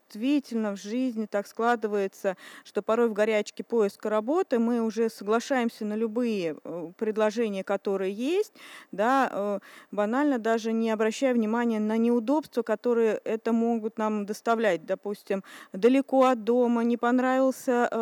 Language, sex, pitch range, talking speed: Russian, female, 215-265 Hz, 125 wpm